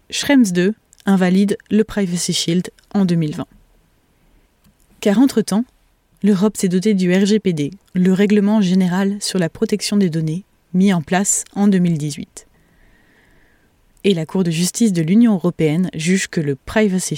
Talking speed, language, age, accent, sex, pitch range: 140 wpm, French, 20-39, French, female, 175-215 Hz